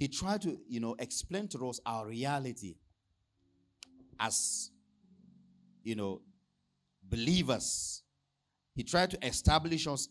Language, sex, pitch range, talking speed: English, male, 105-170 Hz, 115 wpm